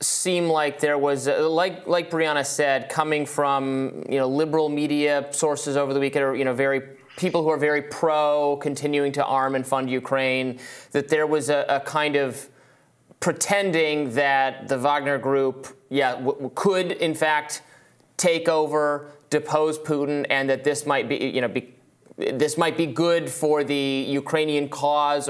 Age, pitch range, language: 30-49, 135-155 Hz, English